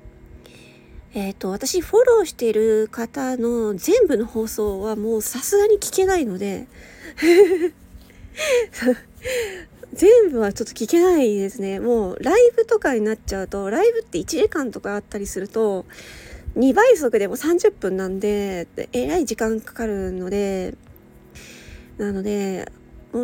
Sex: female